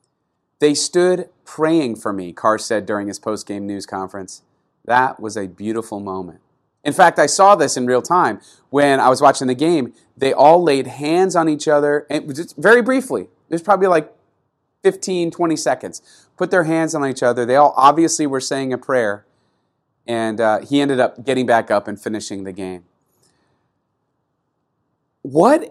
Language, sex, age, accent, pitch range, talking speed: English, male, 30-49, American, 115-160 Hz, 170 wpm